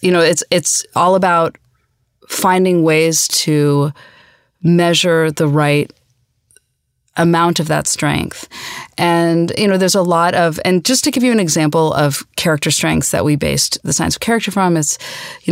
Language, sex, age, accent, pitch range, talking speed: English, female, 30-49, American, 150-180 Hz, 165 wpm